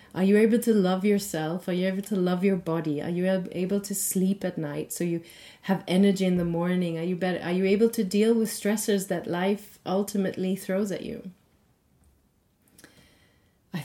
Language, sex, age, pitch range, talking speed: English, female, 30-49, 170-215 Hz, 190 wpm